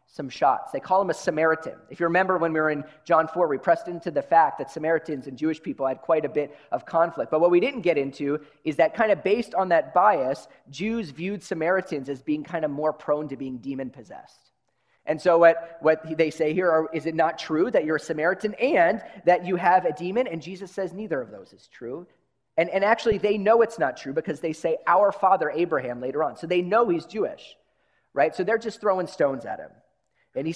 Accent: American